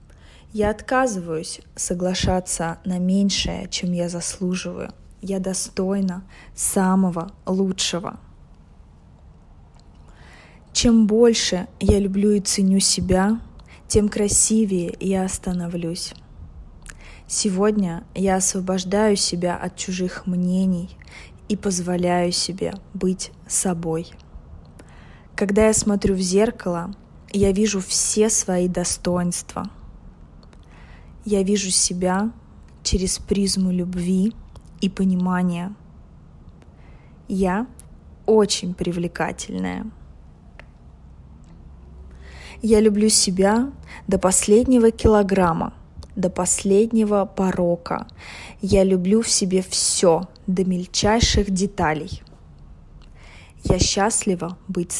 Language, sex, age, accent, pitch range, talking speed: Russian, female, 20-39, native, 165-200 Hz, 85 wpm